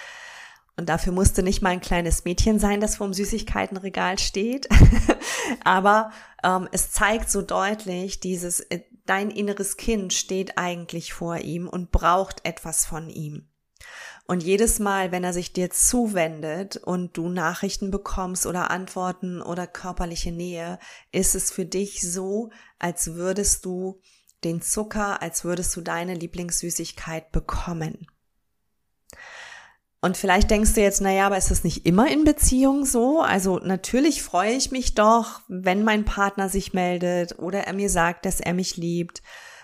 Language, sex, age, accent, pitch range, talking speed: German, female, 30-49, German, 175-205 Hz, 150 wpm